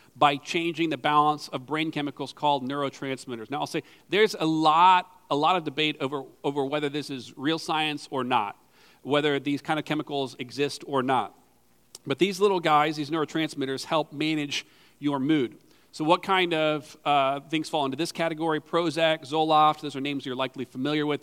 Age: 40-59